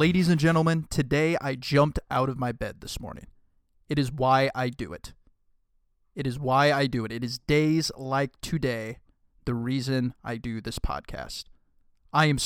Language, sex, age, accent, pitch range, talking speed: English, male, 30-49, American, 120-150 Hz, 180 wpm